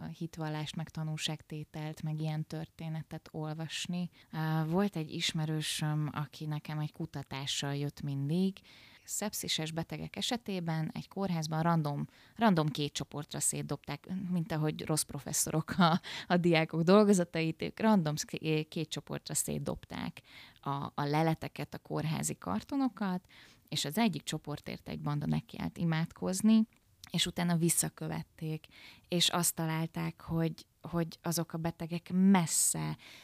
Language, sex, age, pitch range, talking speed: Hungarian, female, 20-39, 155-175 Hz, 115 wpm